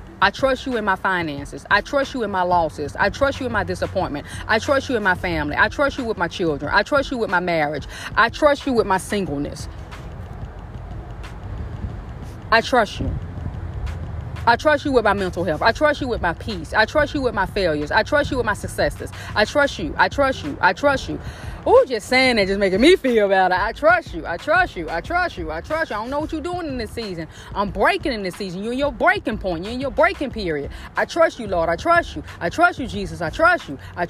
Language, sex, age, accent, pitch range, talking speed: English, female, 30-49, American, 185-295 Hz, 245 wpm